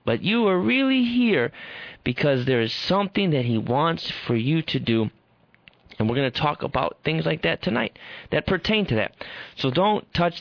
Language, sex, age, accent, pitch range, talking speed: English, male, 30-49, American, 120-155 Hz, 190 wpm